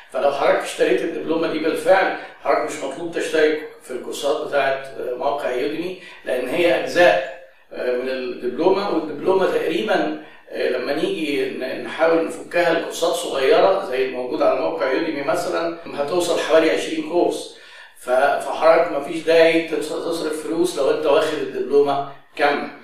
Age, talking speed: 50-69, 125 wpm